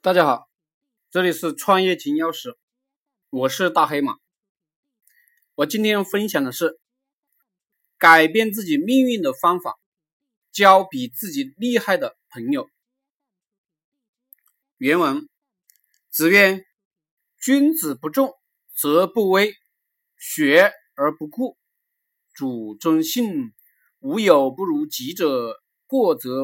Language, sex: Chinese, male